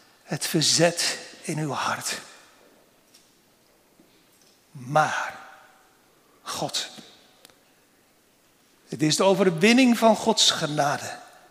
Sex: male